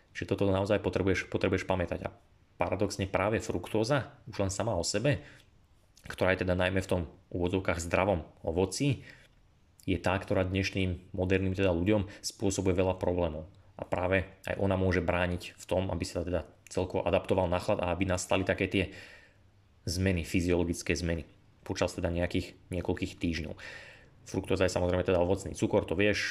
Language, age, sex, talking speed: Slovak, 20-39, male, 160 wpm